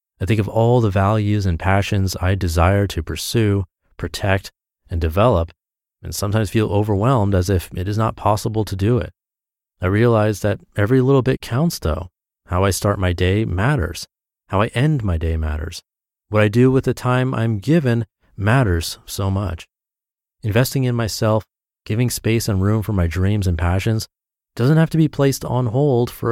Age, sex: 30-49, male